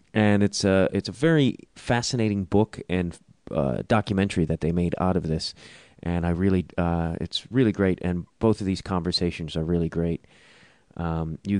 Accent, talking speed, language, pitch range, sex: American, 175 wpm, English, 85-100 Hz, male